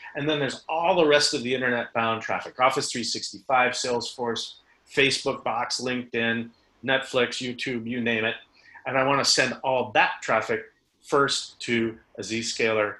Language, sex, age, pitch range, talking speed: English, male, 40-59, 115-140 Hz, 150 wpm